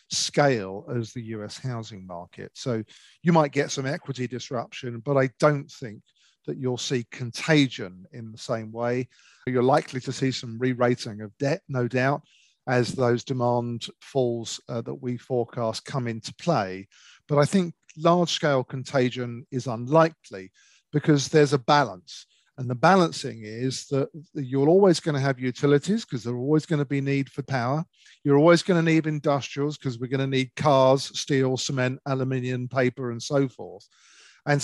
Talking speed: 170 wpm